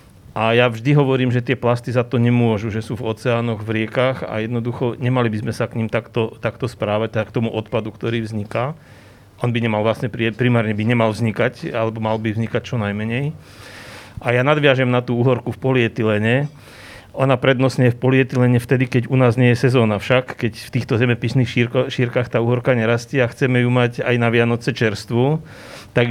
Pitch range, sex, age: 115-130 Hz, male, 40-59